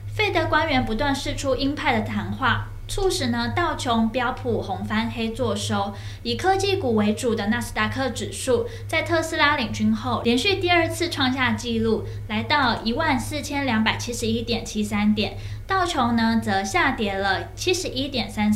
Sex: female